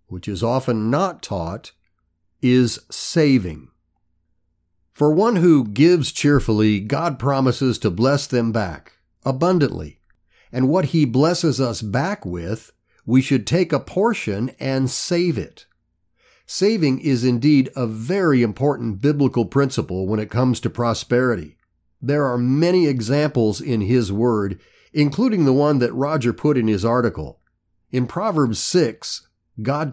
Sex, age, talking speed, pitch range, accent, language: male, 50-69, 135 wpm, 105-145 Hz, American, English